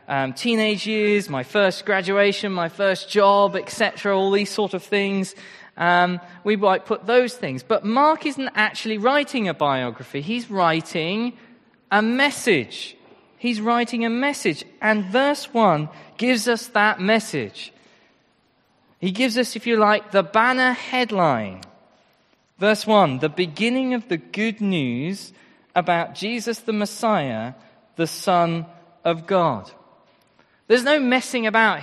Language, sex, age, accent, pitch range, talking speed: English, male, 20-39, British, 175-235 Hz, 135 wpm